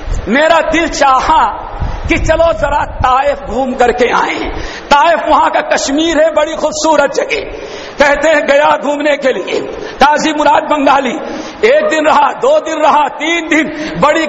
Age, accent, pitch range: 50-69, native, 265-310 Hz